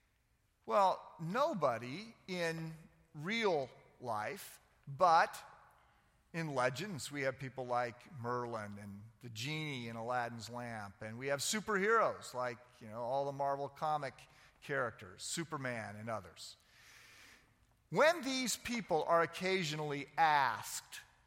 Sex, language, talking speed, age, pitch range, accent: male, English, 115 wpm, 50-69, 140-230 Hz, American